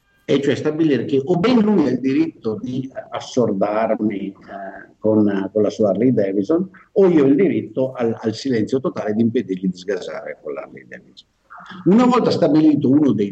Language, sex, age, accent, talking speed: Italian, male, 50-69, native, 180 wpm